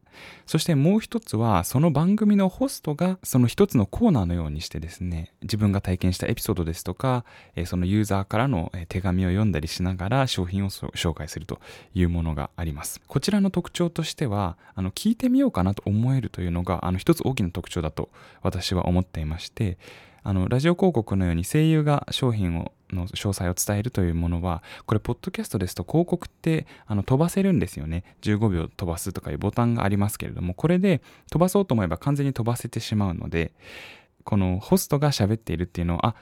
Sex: male